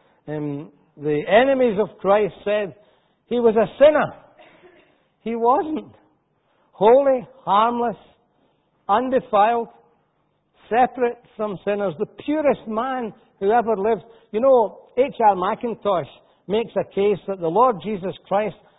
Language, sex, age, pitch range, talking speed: English, male, 60-79, 195-235 Hz, 115 wpm